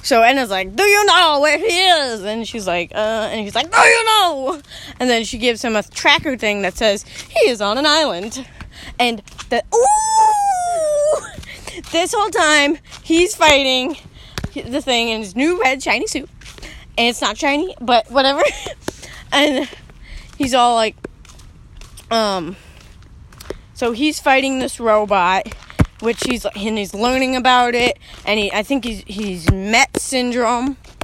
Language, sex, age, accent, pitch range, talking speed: English, female, 20-39, American, 210-280 Hz, 155 wpm